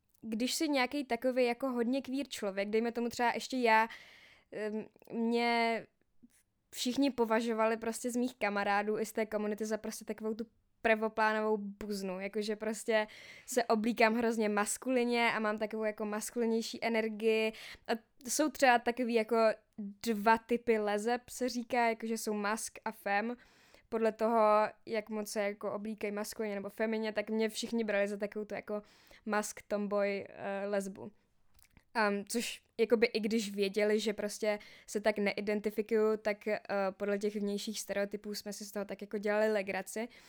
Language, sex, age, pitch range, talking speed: Czech, female, 20-39, 210-245 Hz, 155 wpm